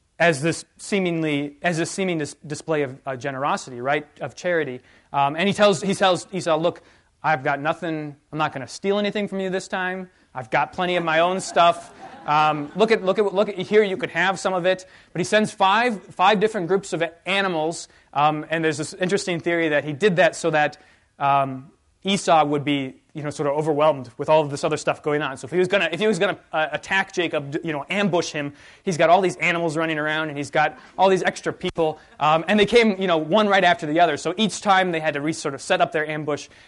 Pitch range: 150-190 Hz